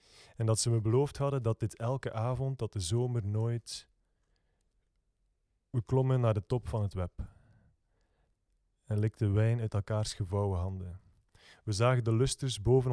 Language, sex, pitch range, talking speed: Dutch, male, 100-120 Hz, 160 wpm